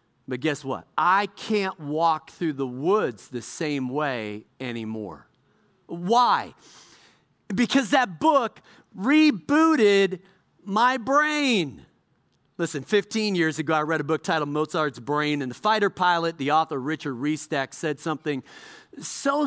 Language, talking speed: English, 130 wpm